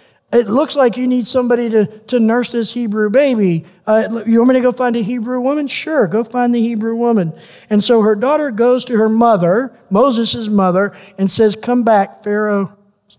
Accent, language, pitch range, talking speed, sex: American, English, 195-245 Hz, 195 wpm, male